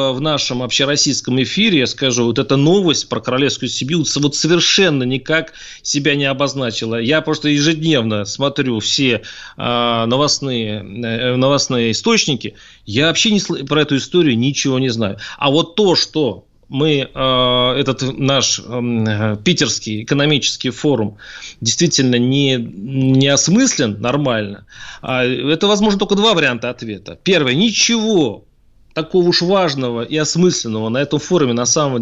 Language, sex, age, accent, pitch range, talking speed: Russian, male, 30-49, native, 120-170 Hz, 130 wpm